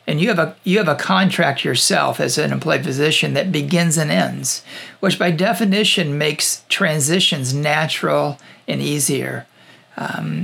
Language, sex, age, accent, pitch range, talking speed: English, male, 50-69, American, 145-185 Hz, 150 wpm